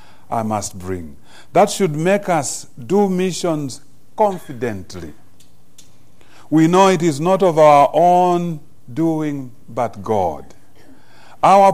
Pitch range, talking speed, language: 115-170 Hz, 115 wpm, English